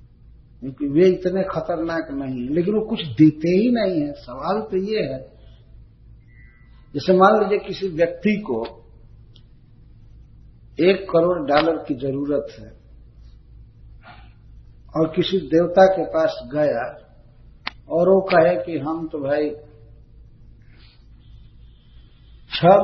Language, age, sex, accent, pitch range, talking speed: Hindi, 50-69, male, native, 115-170 Hz, 110 wpm